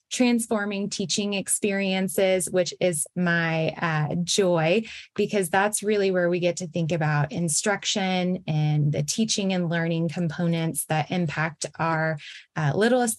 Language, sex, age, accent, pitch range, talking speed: English, female, 20-39, American, 170-215 Hz, 130 wpm